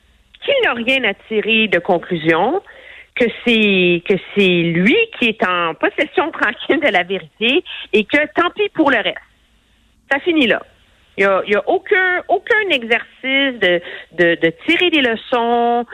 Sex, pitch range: female, 185-280 Hz